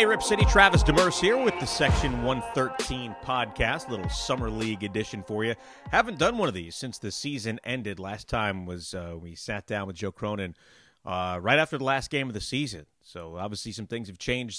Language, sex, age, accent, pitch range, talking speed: English, male, 30-49, American, 100-130 Hz, 215 wpm